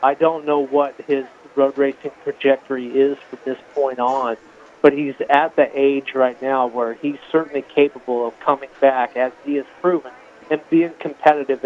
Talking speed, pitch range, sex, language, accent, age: 175 wpm, 130-145 Hz, male, English, American, 40-59